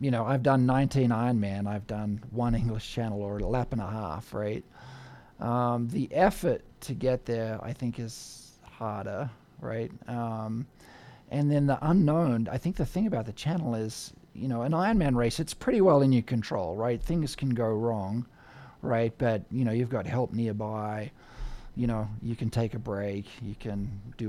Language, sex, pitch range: English, male, 110-130 Hz